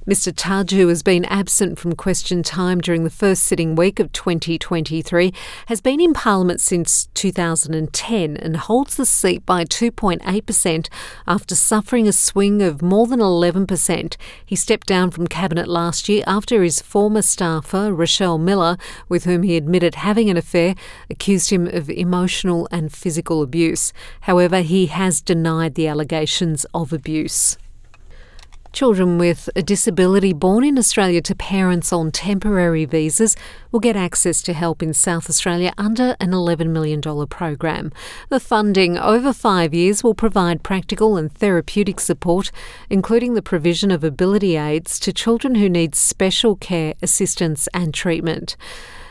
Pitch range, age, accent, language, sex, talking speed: 170-200 Hz, 50-69, Australian, English, female, 150 wpm